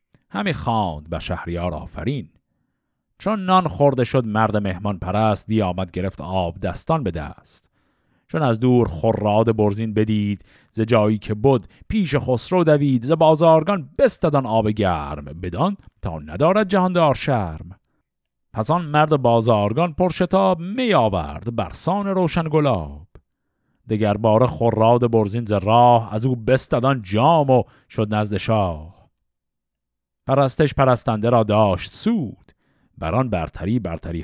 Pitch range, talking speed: 100-145 Hz, 120 wpm